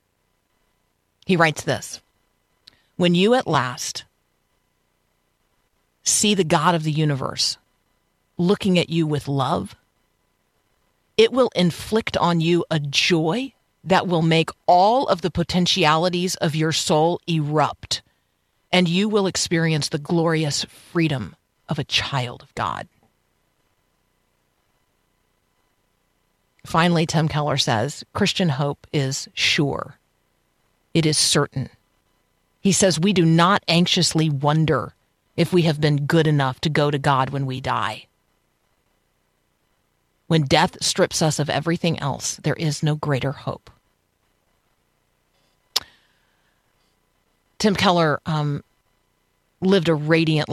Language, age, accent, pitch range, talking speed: English, 40-59, American, 140-170 Hz, 115 wpm